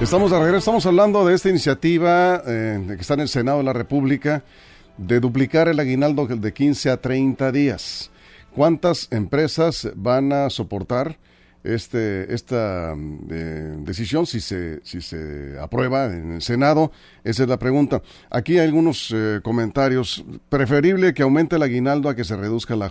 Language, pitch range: Spanish, 105-140 Hz